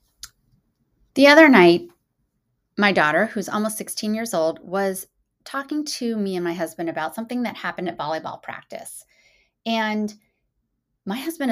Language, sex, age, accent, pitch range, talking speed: English, female, 30-49, American, 195-295 Hz, 140 wpm